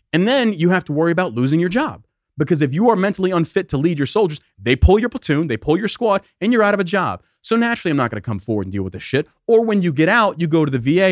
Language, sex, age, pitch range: English, male, 30-49, 130-195 Hz